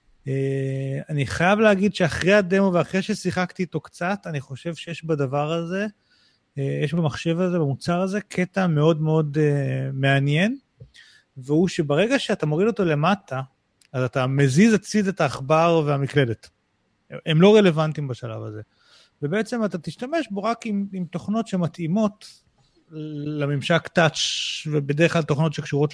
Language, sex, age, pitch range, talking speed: Hebrew, male, 30-49, 140-190 Hz, 135 wpm